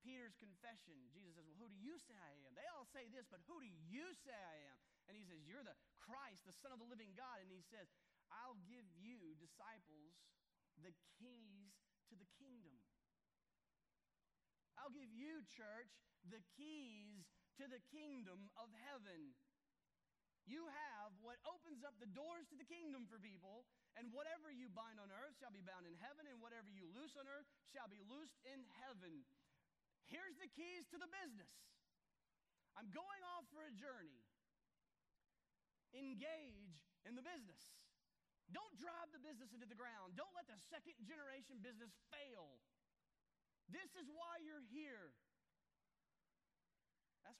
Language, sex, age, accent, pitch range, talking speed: English, male, 30-49, American, 210-295 Hz, 160 wpm